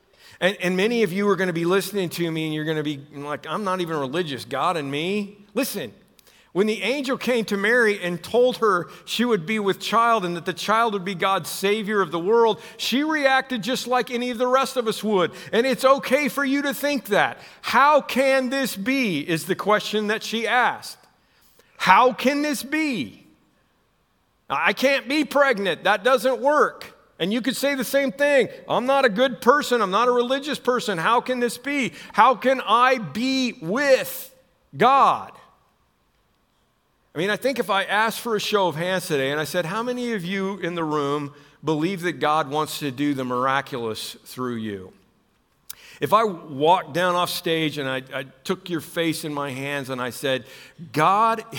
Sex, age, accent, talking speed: male, 50-69, American, 200 wpm